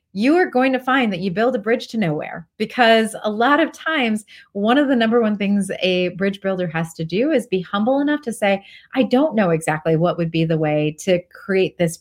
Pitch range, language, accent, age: 175-245 Hz, English, American, 30-49